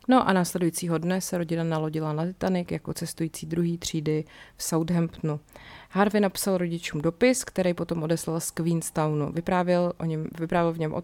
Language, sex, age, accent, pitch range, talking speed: Czech, female, 30-49, native, 160-175 Hz, 150 wpm